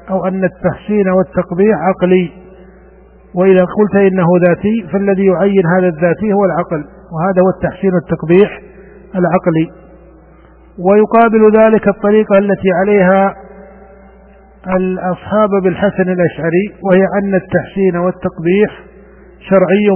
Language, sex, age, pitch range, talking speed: Arabic, male, 50-69, 180-195 Hz, 100 wpm